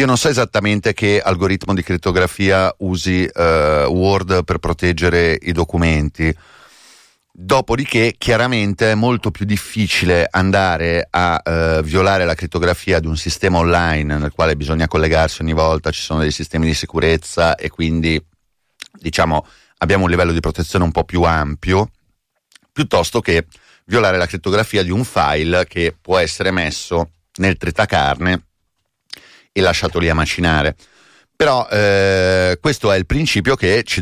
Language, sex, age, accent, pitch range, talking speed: Italian, male, 30-49, native, 80-100 Hz, 145 wpm